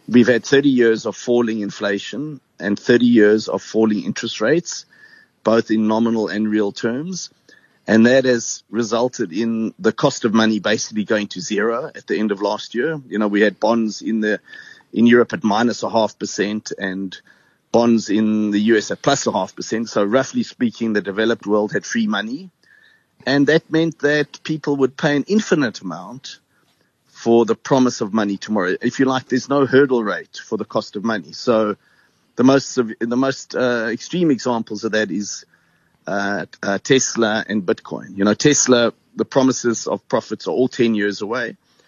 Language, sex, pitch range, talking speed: English, male, 110-140 Hz, 185 wpm